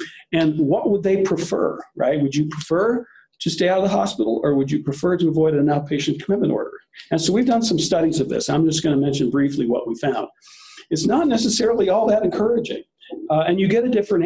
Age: 50-69